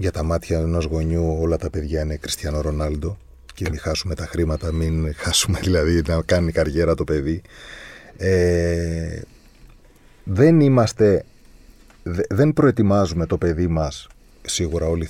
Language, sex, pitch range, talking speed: Greek, male, 85-120 Hz, 135 wpm